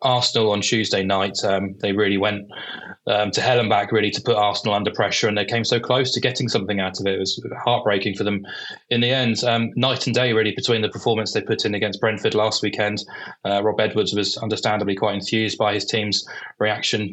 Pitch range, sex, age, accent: 100-115 Hz, male, 20-39, British